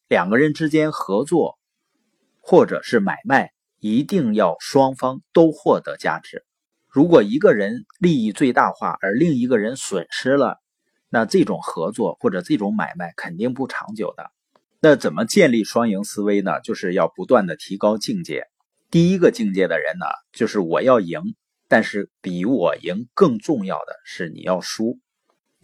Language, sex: Chinese, male